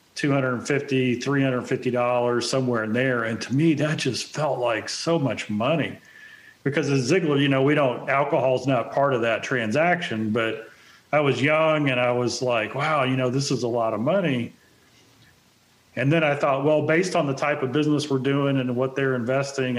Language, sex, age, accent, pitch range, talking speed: English, male, 40-59, American, 125-145 Hz, 185 wpm